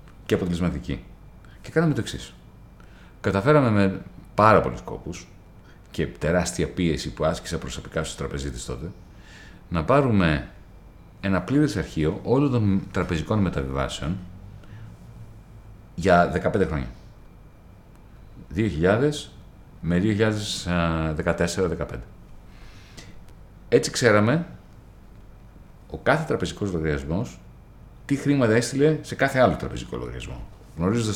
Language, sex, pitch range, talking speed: Greek, male, 85-125 Hz, 100 wpm